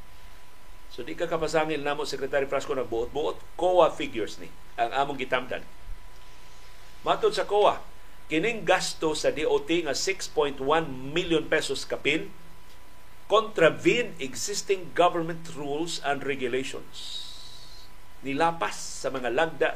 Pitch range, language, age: 135-210 Hz, Filipino, 50-69